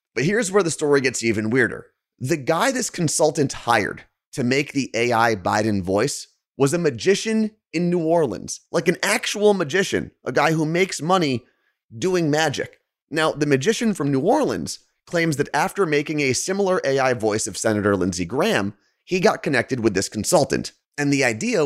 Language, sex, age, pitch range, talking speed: English, male, 30-49, 110-165 Hz, 175 wpm